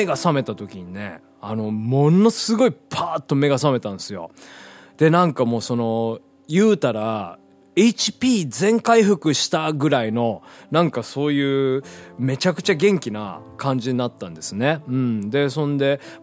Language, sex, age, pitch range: Japanese, male, 20-39, 110-155 Hz